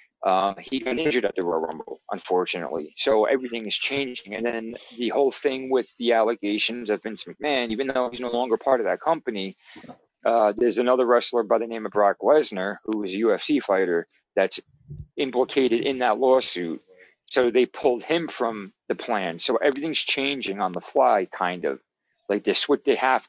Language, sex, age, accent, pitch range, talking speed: German, male, 40-59, American, 105-140 Hz, 190 wpm